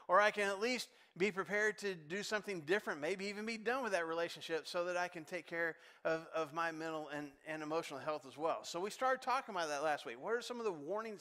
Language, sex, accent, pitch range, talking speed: English, male, American, 170-225 Hz, 255 wpm